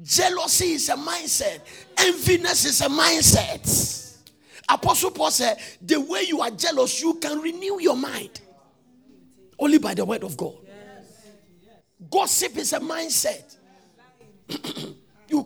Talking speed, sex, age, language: 125 wpm, male, 50-69, English